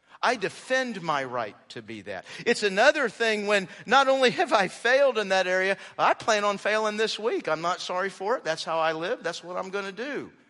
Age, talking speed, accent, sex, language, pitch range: 50-69, 230 wpm, American, male, English, 140-210 Hz